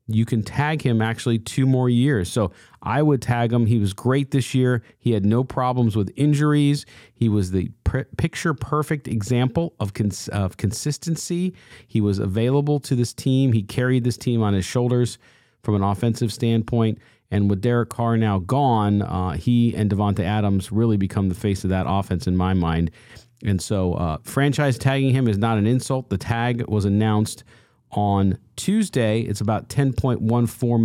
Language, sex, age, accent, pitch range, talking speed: English, male, 40-59, American, 105-130 Hz, 175 wpm